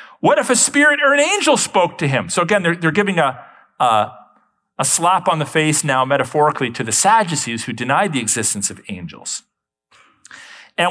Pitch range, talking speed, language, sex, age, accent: 125-180 Hz, 185 wpm, English, male, 40-59, American